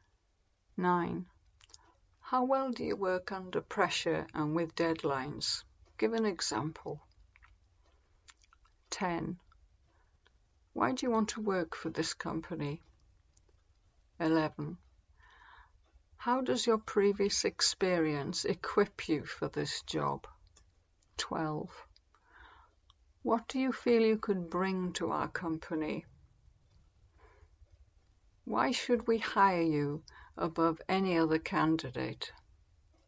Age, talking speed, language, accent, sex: 60-79, 100 wpm, English, British, female